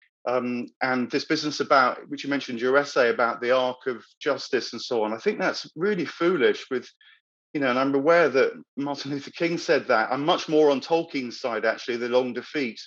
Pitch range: 130-165 Hz